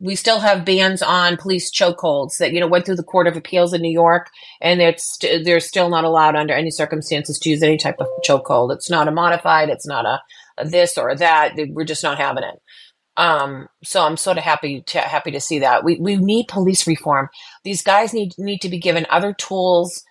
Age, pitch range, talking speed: 30-49, 165-195 Hz, 225 wpm